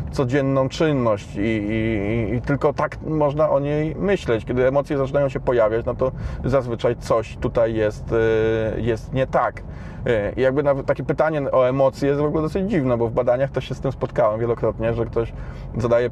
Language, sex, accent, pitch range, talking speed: Polish, male, native, 115-140 Hz, 185 wpm